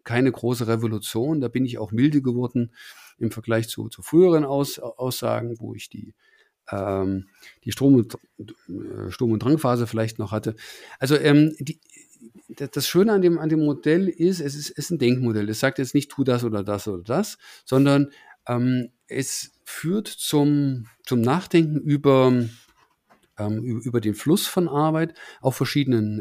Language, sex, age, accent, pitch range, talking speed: German, male, 50-69, German, 115-150 Hz, 165 wpm